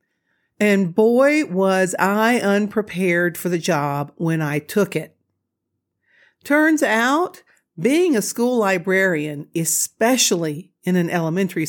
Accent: American